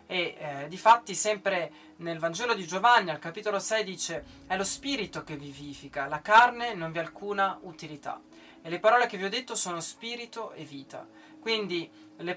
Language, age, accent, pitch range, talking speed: Italian, 20-39, native, 160-210 Hz, 180 wpm